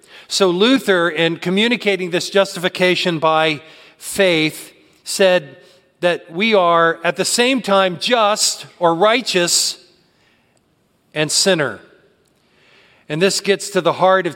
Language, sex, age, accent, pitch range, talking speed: English, male, 40-59, American, 165-205 Hz, 115 wpm